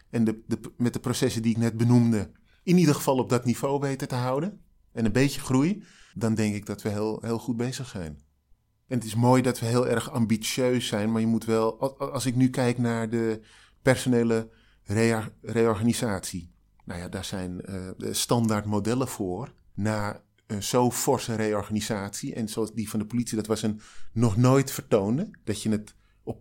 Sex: male